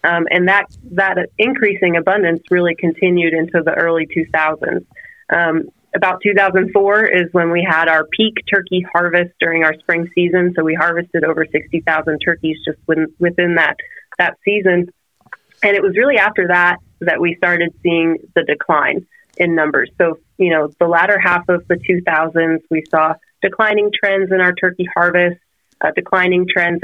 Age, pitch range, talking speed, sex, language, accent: 30-49, 160-185 Hz, 165 wpm, female, English, American